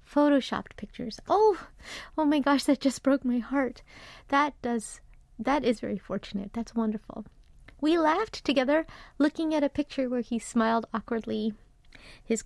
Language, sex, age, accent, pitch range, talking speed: English, female, 30-49, American, 230-290 Hz, 150 wpm